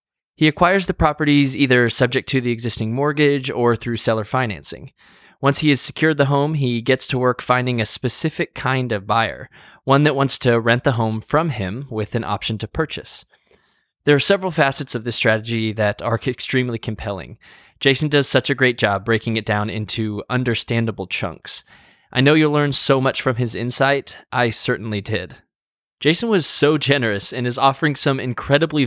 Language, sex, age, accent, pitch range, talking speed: English, male, 20-39, American, 115-145 Hz, 185 wpm